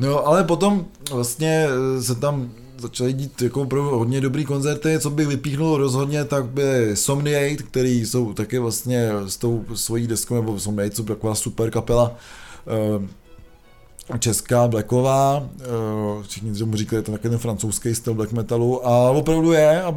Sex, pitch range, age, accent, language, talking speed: male, 120-145 Hz, 20-39, native, Czech, 155 wpm